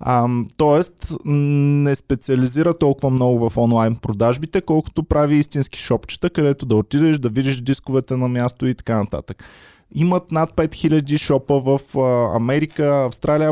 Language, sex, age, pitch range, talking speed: Bulgarian, male, 20-39, 120-155 Hz, 135 wpm